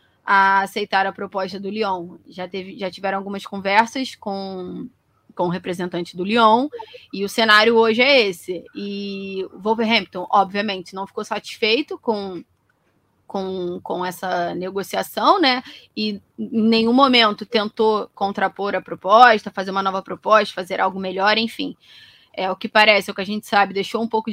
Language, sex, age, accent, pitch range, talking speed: Portuguese, female, 20-39, Brazilian, 195-235 Hz, 160 wpm